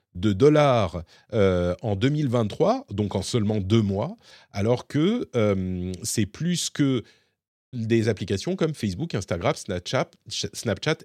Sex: male